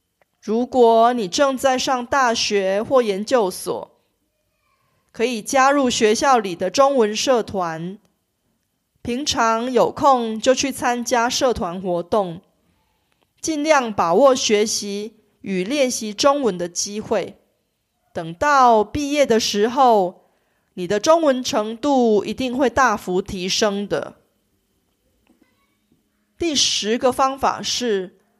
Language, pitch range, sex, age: Korean, 200-265 Hz, female, 30-49